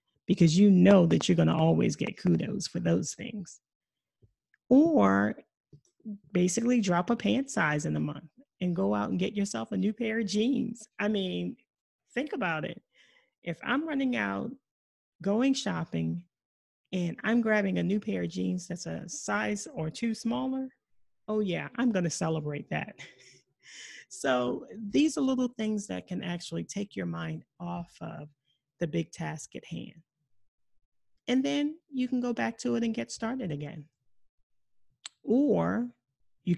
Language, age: English, 30-49